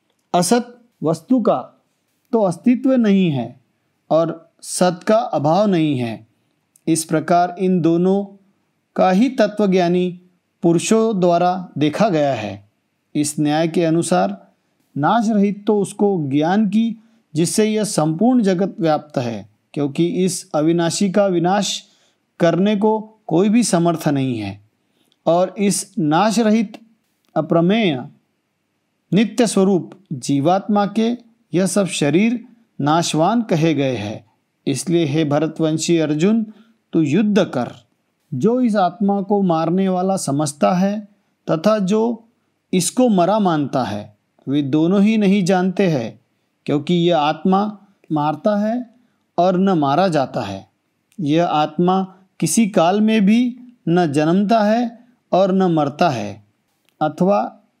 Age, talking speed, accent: 50-69, 125 wpm, native